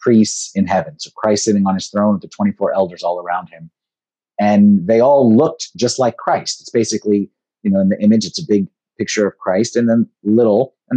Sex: male